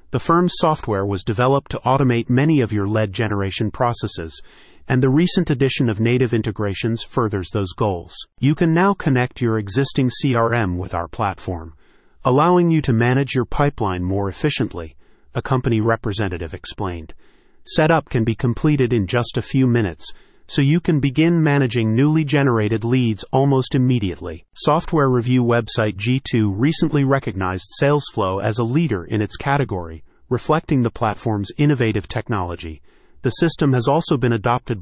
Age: 40-59